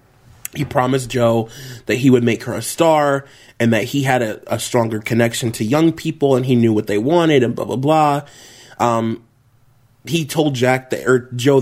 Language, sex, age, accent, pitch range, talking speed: English, male, 20-39, American, 120-145 Hz, 195 wpm